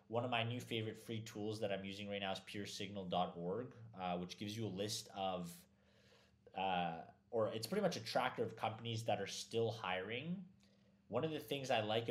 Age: 20-39